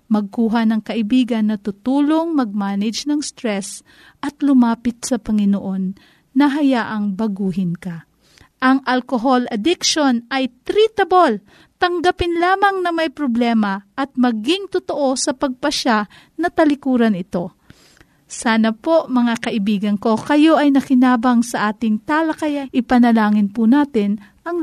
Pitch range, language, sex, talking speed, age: 220-300 Hz, Filipino, female, 120 wpm, 40-59